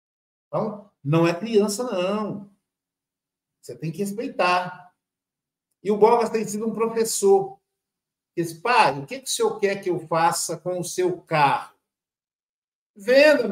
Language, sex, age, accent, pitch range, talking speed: Portuguese, male, 60-79, Brazilian, 170-225 Hz, 140 wpm